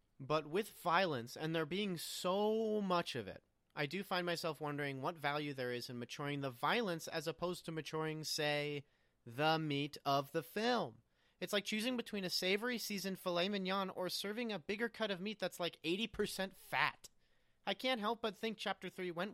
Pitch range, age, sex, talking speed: 145-200 Hz, 30-49, male, 190 wpm